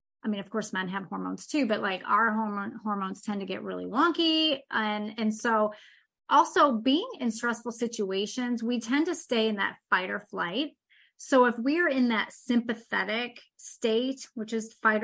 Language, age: English, 30-49